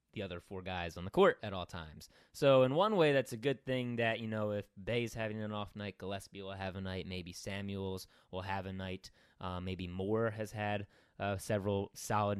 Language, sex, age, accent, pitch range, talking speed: English, male, 20-39, American, 95-110 Hz, 225 wpm